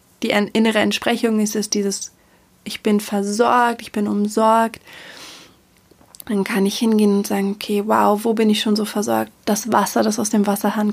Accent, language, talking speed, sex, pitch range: German, German, 175 wpm, female, 205-225 Hz